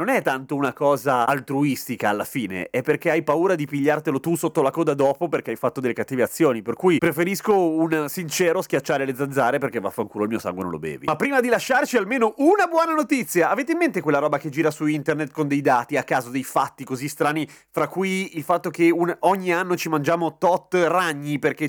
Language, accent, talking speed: Italian, native, 220 wpm